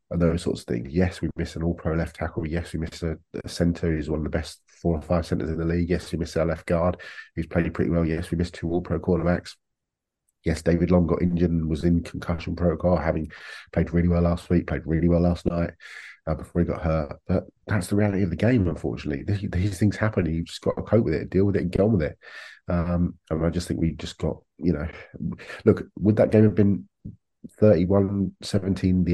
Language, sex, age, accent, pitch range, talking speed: English, male, 30-49, British, 80-95 Hz, 235 wpm